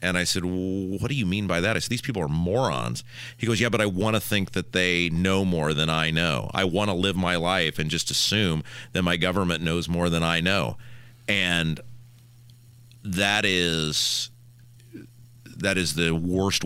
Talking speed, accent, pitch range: 190 wpm, American, 80-110 Hz